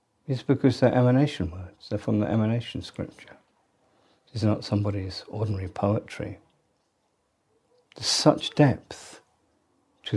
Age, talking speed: 50-69, 110 wpm